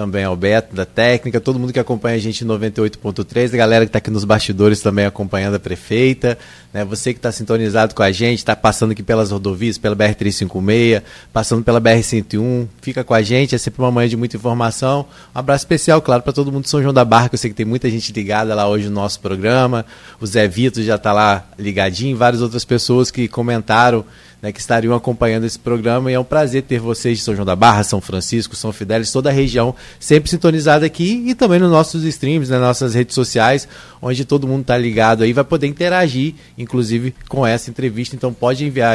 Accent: Brazilian